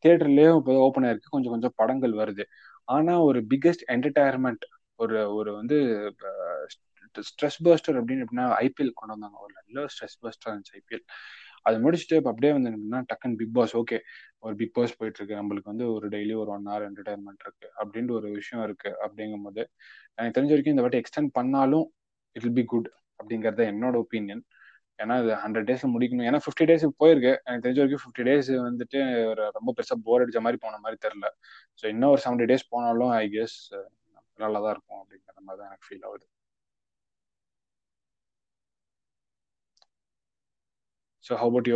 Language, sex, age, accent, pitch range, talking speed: Tamil, male, 20-39, native, 105-135 Hz, 150 wpm